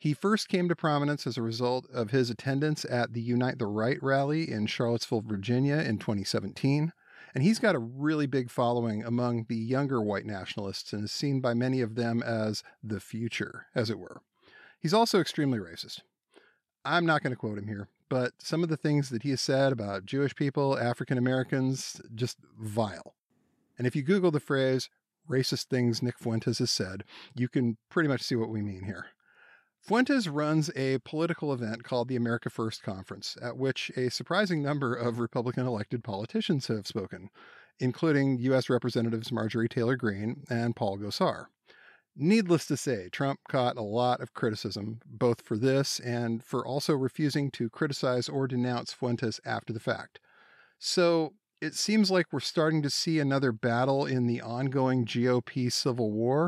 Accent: American